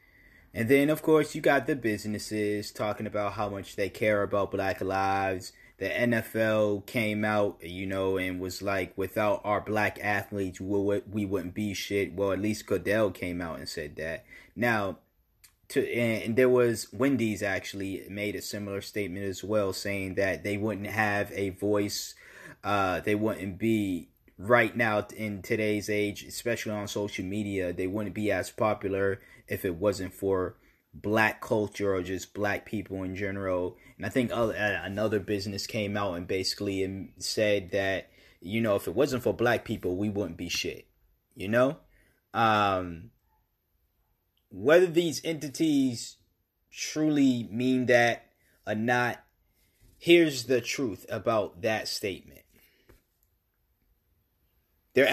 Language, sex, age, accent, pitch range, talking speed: English, male, 20-39, American, 95-110 Hz, 145 wpm